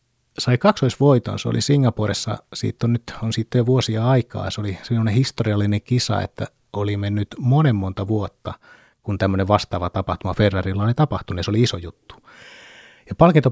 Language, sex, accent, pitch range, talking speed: Finnish, male, native, 100-125 Hz, 150 wpm